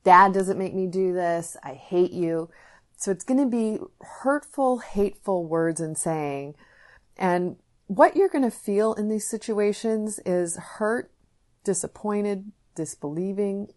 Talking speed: 130 wpm